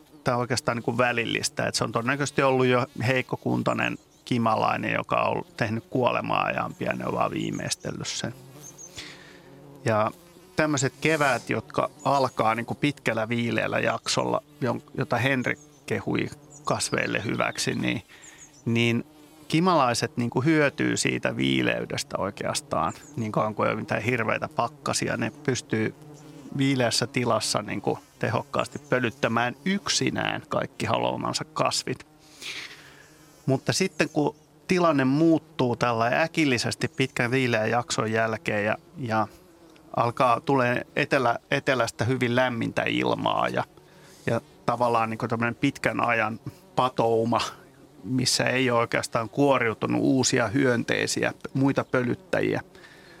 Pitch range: 115-145 Hz